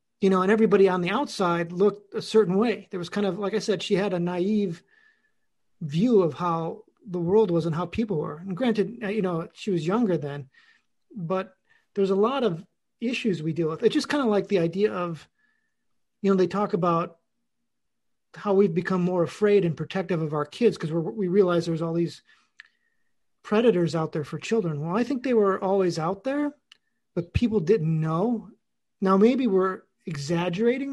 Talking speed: 190 wpm